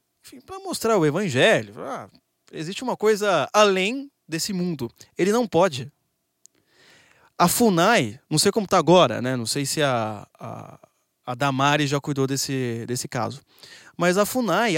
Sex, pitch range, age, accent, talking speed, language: male, 135-215 Hz, 20-39, Brazilian, 150 wpm, Portuguese